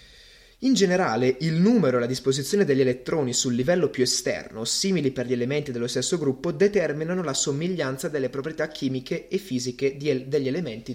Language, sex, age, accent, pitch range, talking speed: Italian, male, 20-39, native, 125-185 Hz, 165 wpm